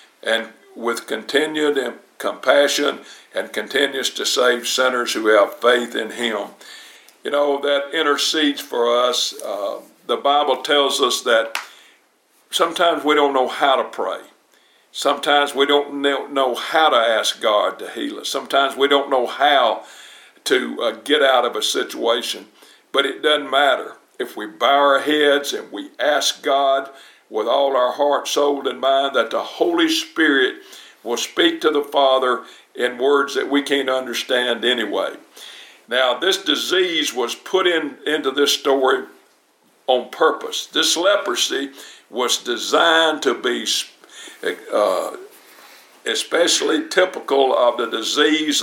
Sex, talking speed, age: male, 140 wpm, 60-79